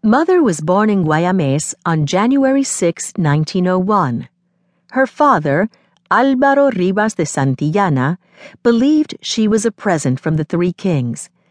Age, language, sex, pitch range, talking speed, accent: 50-69, English, female, 150-225 Hz, 125 wpm, American